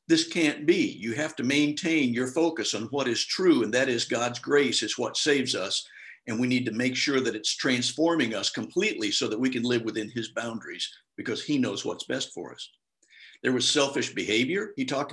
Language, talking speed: English, 215 wpm